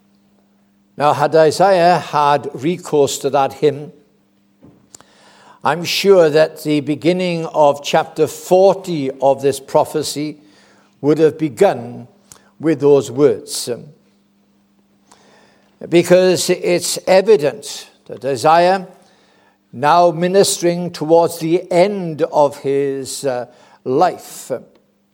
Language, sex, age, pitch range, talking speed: English, male, 60-79, 140-180 Hz, 90 wpm